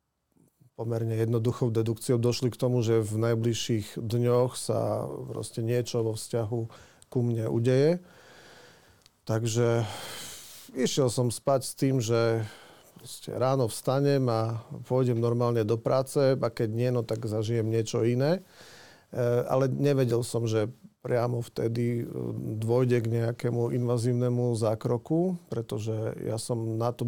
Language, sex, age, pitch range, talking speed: Slovak, male, 40-59, 115-125 Hz, 120 wpm